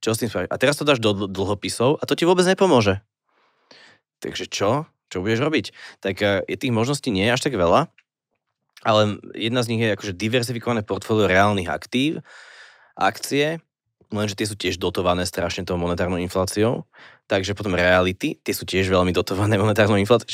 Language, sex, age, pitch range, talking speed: Slovak, male, 20-39, 90-115 Hz, 170 wpm